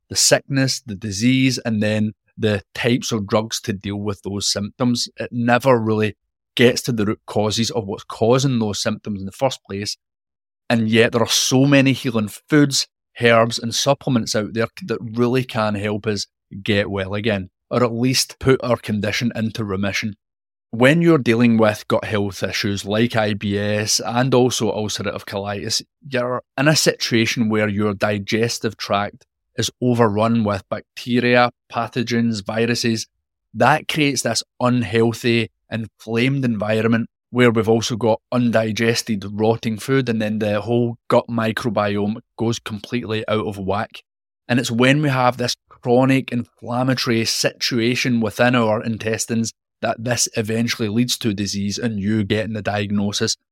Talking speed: 150 wpm